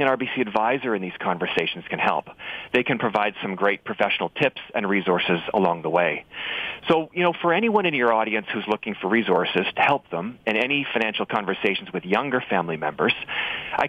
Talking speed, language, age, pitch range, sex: 190 wpm, English, 40-59, 105-140 Hz, male